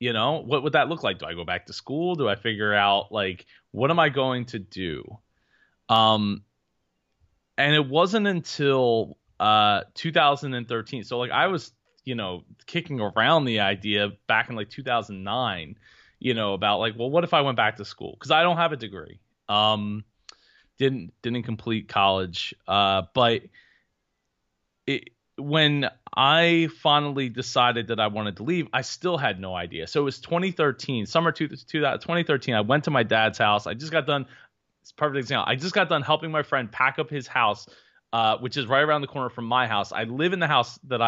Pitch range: 105-150 Hz